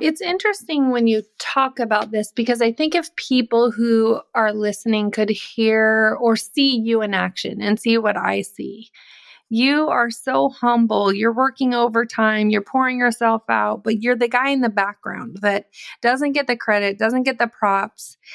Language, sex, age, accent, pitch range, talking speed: English, female, 30-49, American, 200-240 Hz, 175 wpm